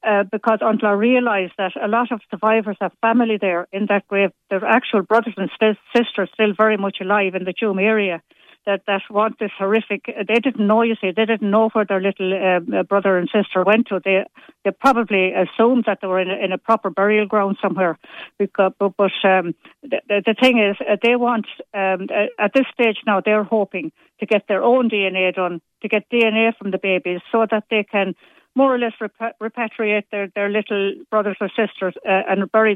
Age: 60-79